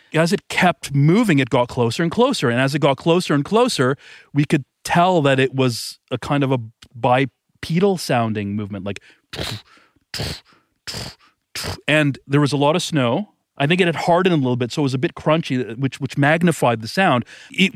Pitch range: 130-170 Hz